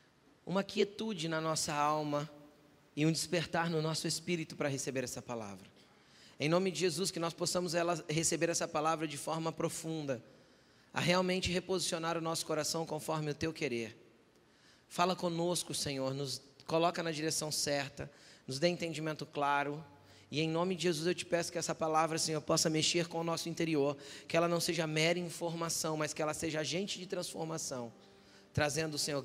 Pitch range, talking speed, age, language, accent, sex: 140-175 Hz, 170 wpm, 20-39, Portuguese, Brazilian, male